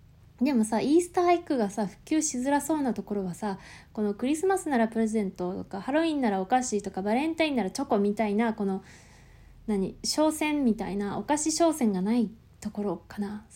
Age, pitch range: 20-39, 200-275 Hz